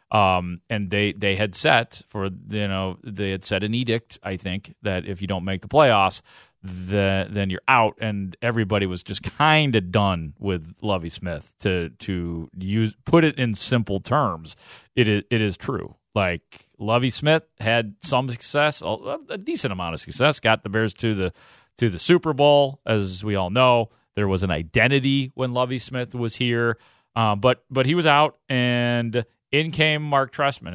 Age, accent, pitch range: 30-49, American, 100-135 Hz